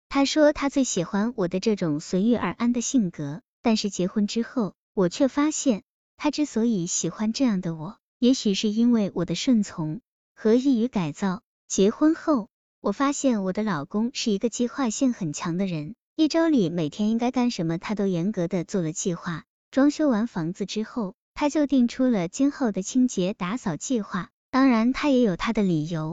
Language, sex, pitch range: Chinese, male, 185-245 Hz